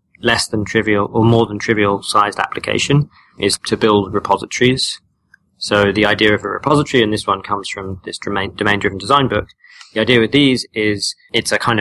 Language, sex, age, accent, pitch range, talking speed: English, male, 20-39, British, 100-115 Hz, 185 wpm